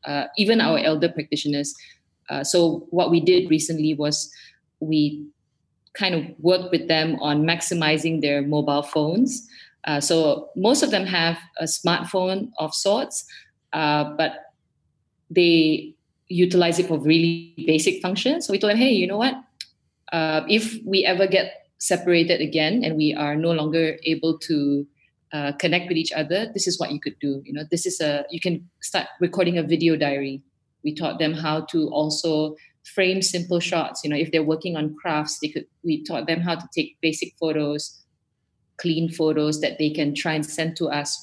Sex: female